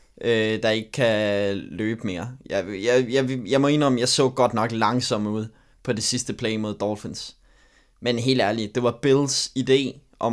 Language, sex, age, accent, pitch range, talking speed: Danish, male, 20-39, native, 105-125 Hz, 185 wpm